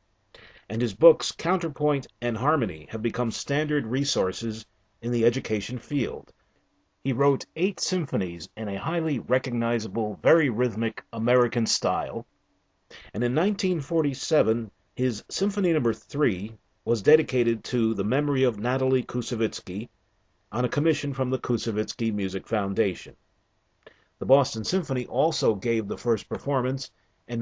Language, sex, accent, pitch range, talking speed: English, male, American, 110-140 Hz, 130 wpm